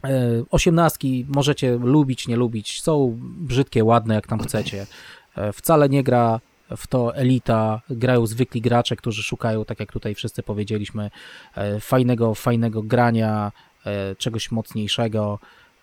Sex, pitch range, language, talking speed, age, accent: male, 110-130 Hz, Polish, 120 wpm, 20-39, native